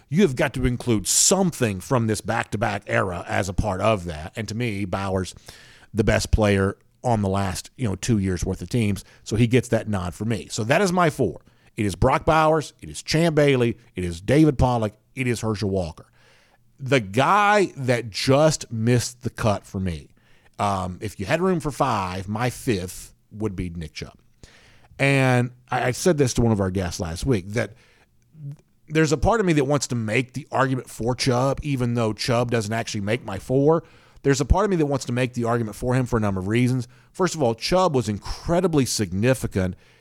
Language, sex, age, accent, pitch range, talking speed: English, male, 50-69, American, 105-135 Hz, 210 wpm